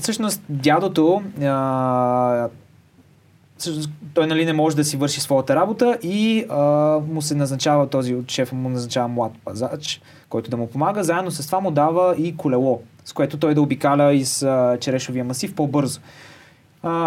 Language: Bulgarian